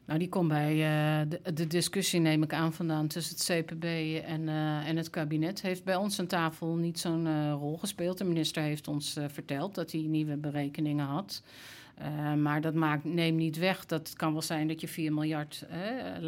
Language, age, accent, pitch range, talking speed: Dutch, 50-69, Dutch, 150-170 Hz, 210 wpm